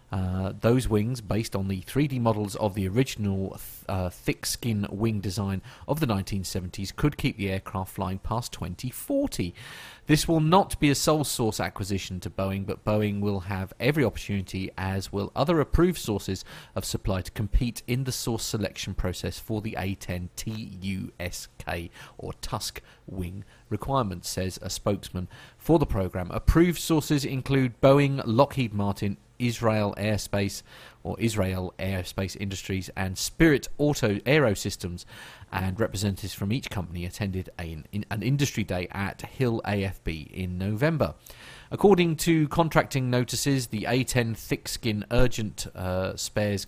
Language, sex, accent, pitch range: English, male, British, 95-125 Hz